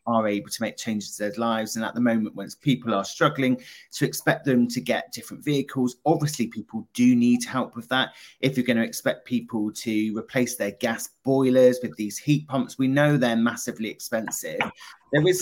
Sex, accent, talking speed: male, British, 200 wpm